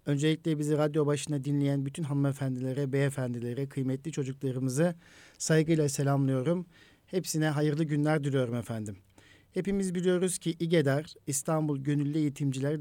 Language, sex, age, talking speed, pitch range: Turkish, male, 50-69, 110 wpm, 135-160 Hz